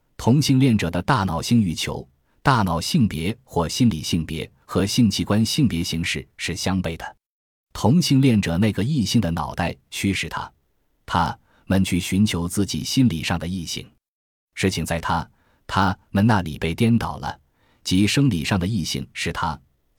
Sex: male